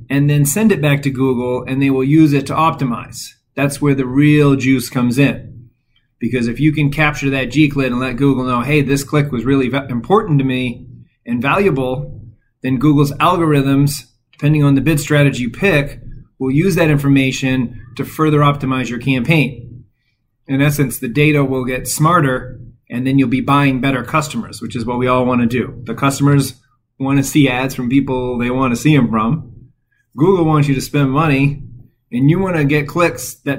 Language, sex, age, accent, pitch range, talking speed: English, male, 30-49, American, 125-145 Hz, 195 wpm